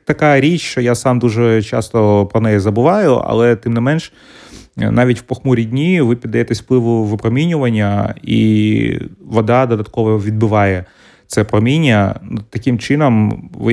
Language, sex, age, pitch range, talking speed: Ukrainian, male, 30-49, 105-120 Hz, 135 wpm